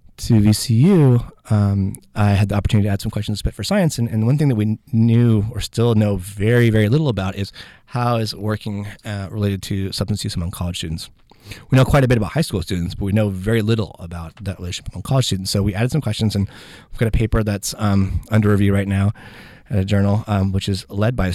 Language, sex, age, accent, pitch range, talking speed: English, male, 30-49, American, 100-120 Hz, 245 wpm